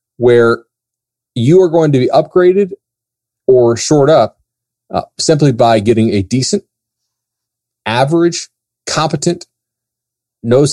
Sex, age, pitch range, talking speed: male, 30-49, 115-145 Hz, 105 wpm